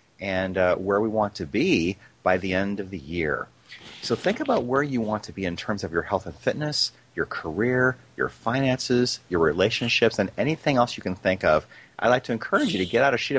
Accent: American